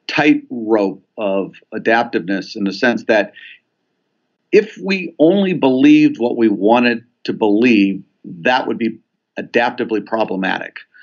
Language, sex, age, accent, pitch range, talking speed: English, male, 50-69, American, 105-155 Hz, 115 wpm